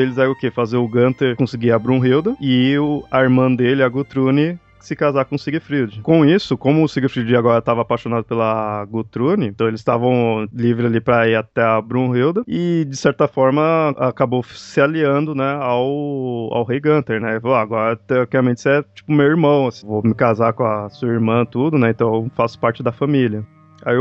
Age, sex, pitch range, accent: 20-39, male, 115-140 Hz, Brazilian